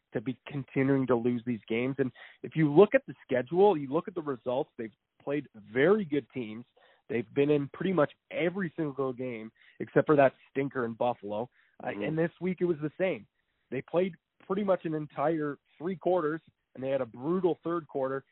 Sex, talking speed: male, 200 wpm